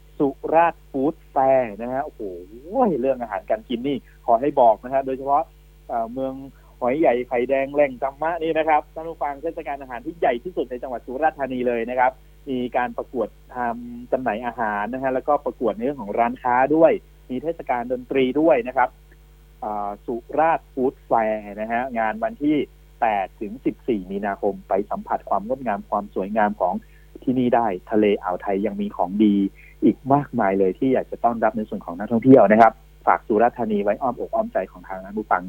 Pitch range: 115-150 Hz